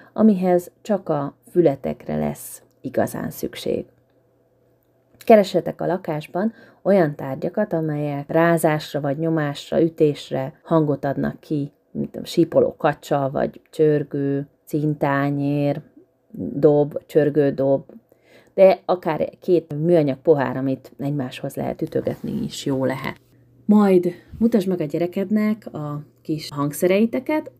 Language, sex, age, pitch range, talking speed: Hungarian, female, 30-49, 140-180 Hz, 105 wpm